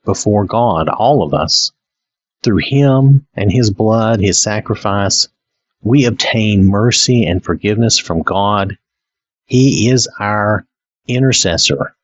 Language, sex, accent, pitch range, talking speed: English, male, American, 95-125 Hz, 115 wpm